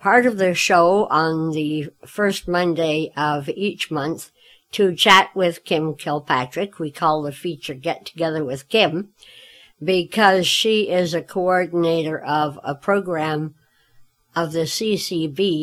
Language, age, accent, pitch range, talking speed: English, 60-79, American, 160-195 Hz, 135 wpm